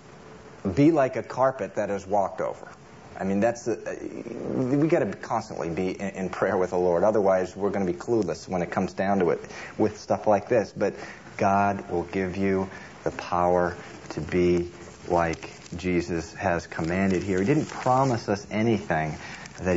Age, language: 40-59, English